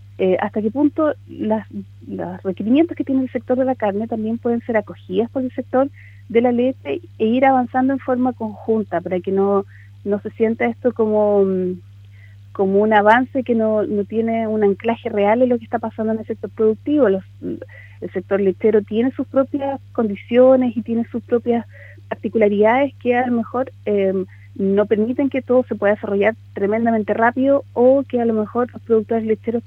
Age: 30-49